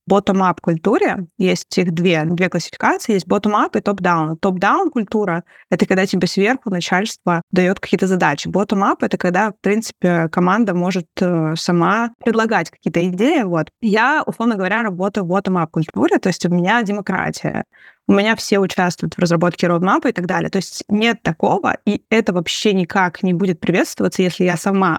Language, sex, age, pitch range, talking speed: Russian, female, 20-39, 180-220 Hz, 170 wpm